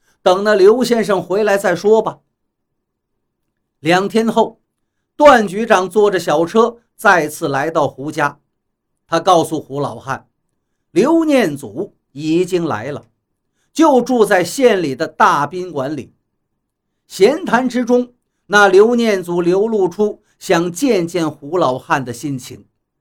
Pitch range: 160-235 Hz